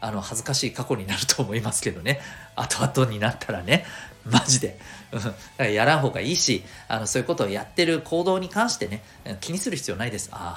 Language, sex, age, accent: Japanese, male, 40-59, native